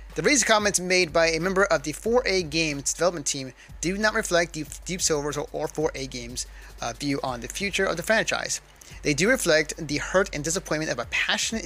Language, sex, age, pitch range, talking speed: English, male, 30-49, 140-180 Hz, 200 wpm